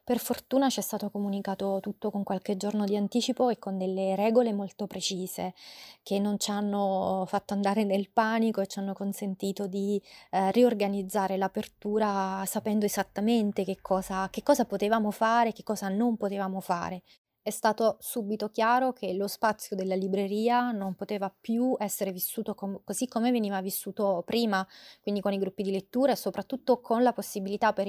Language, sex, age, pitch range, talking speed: Italian, female, 20-39, 195-220 Hz, 170 wpm